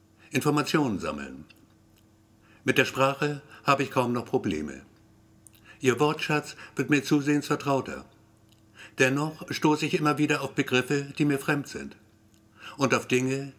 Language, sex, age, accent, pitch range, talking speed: German, male, 60-79, German, 110-140 Hz, 130 wpm